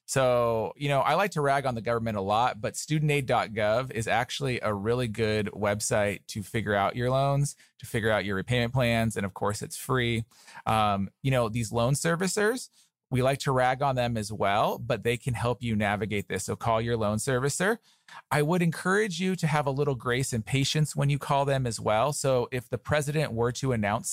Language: English